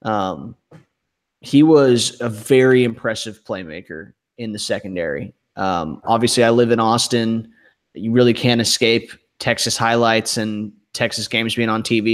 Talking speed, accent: 140 wpm, American